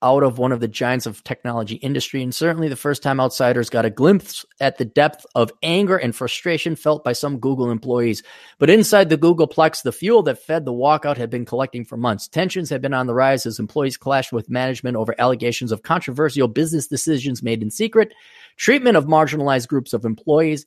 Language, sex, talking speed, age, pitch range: English, male, 205 wpm, 30-49, 120-160 Hz